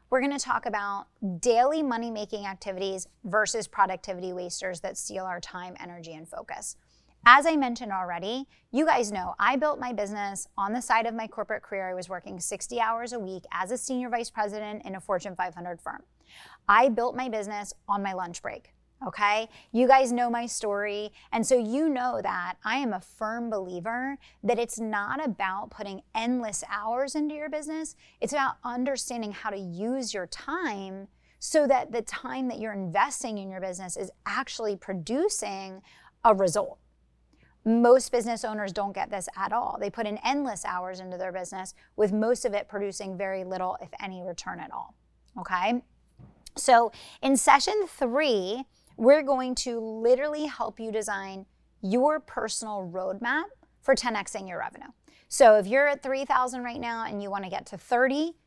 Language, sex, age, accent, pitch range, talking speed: English, female, 30-49, American, 195-250 Hz, 175 wpm